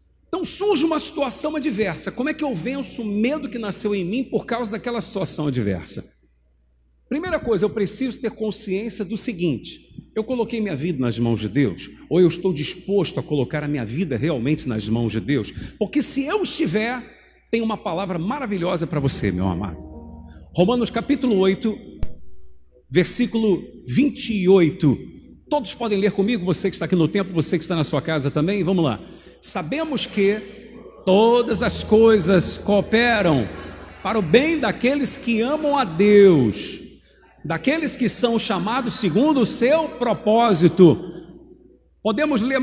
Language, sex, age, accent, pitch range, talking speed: Portuguese, male, 50-69, Brazilian, 170-250 Hz, 155 wpm